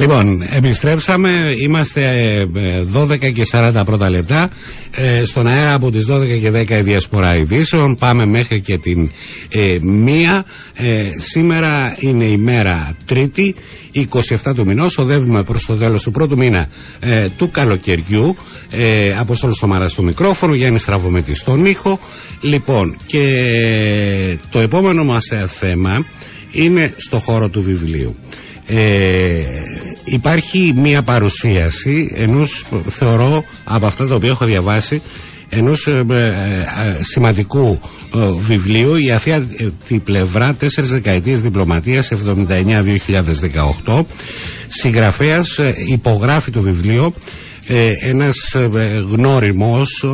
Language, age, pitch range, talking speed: Greek, 60-79, 100-135 Hz, 120 wpm